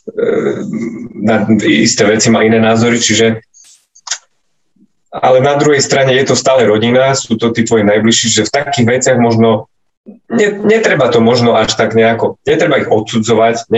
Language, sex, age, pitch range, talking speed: Slovak, male, 20-39, 105-120 Hz, 150 wpm